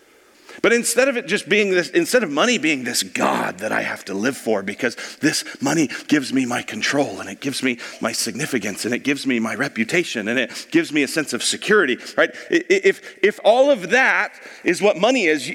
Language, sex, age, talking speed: English, male, 40-59, 215 wpm